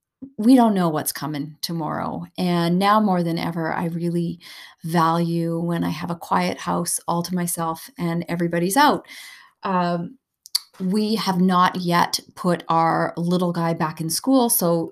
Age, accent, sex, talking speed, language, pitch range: 30-49, American, female, 155 wpm, English, 165-185 Hz